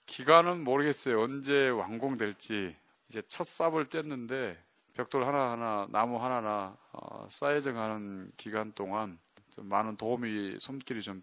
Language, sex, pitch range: Korean, male, 105-135 Hz